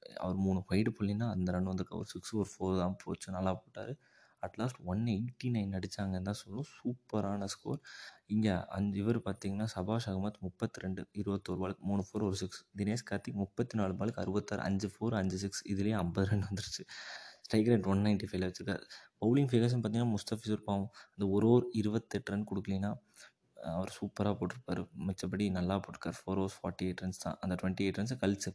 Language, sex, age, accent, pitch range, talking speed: Tamil, male, 20-39, native, 95-105 Hz, 175 wpm